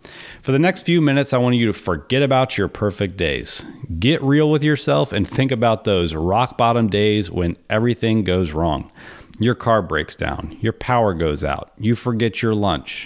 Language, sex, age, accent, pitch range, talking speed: English, male, 40-59, American, 100-135 Hz, 185 wpm